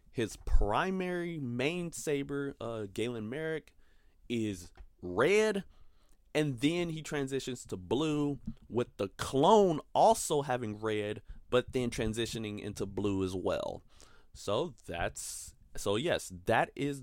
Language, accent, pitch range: English, American, 100-140 Hz